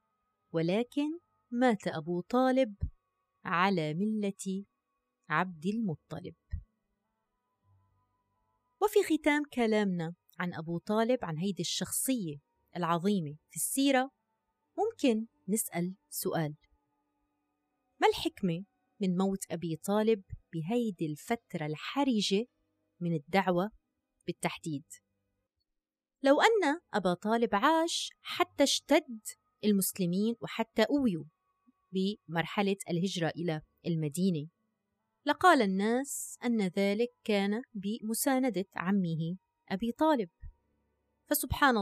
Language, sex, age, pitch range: Arabic, female, 30-49, 165-240 Hz